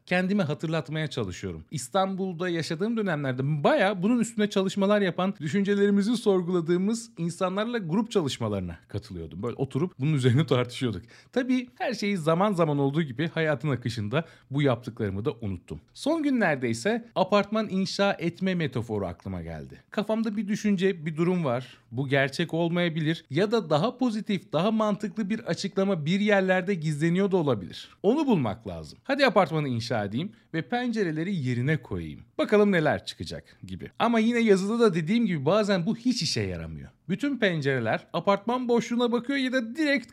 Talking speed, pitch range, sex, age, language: 150 wpm, 135-210 Hz, male, 40-59, Turkish